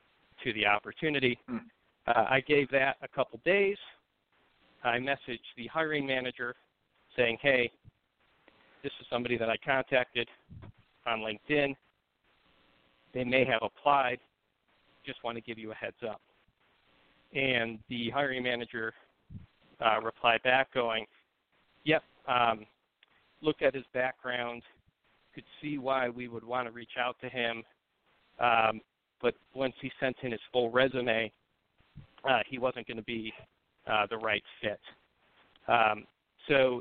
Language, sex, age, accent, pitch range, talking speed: English, male, 50-69, American, 115-135 Hz, 135 wpm